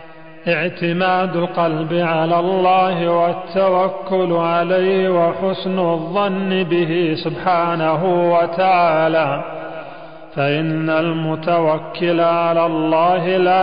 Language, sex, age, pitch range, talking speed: Arabic, male, 40-59, 160-180 Hz, 70 wpm